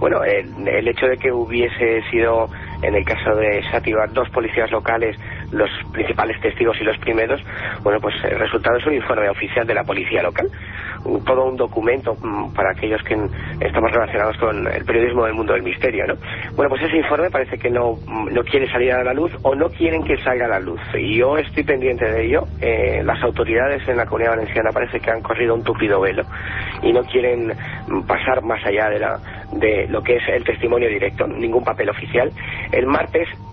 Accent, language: Spanish, Spanish